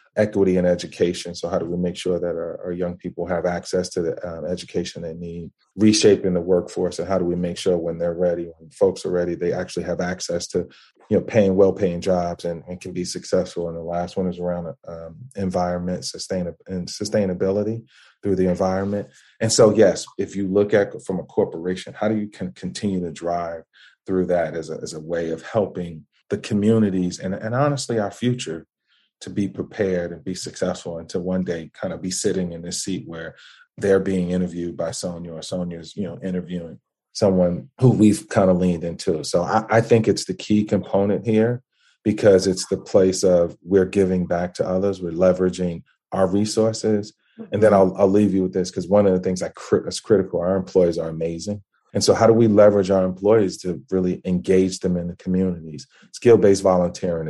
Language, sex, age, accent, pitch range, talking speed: English, male, 30-49, American, 85-100 Hz, 200 wpm